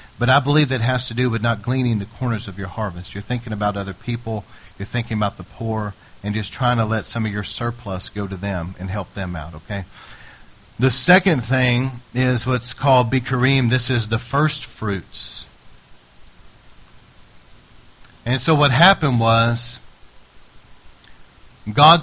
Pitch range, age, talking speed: 110-135 Hz, 40-59, 165 wpm